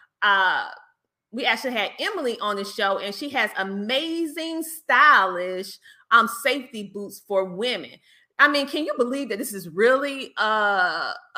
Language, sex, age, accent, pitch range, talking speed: English, female, 30-49, American, 200-275 Hz, 150 wpm